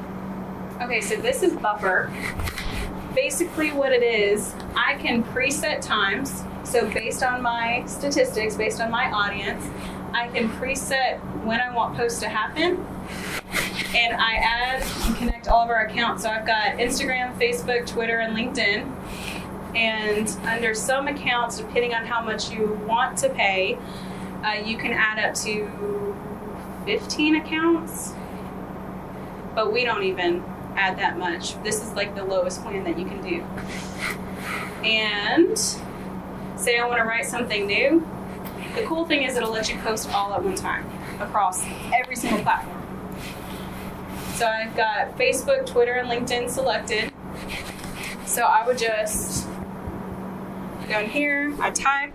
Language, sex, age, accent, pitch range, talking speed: English, female, 20-39, American, 210-250 Hz, 145 wpm